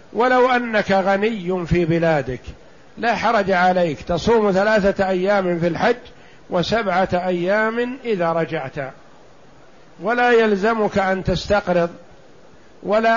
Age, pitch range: 50-69, 175-220 Hz